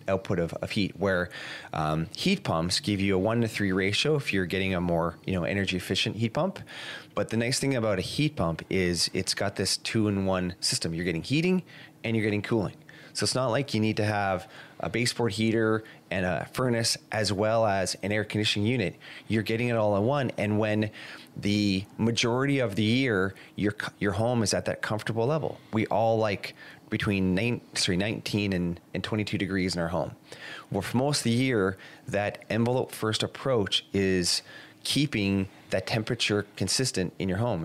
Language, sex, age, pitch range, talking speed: English, male, 30-49, 95-120 Hz, 195 wpm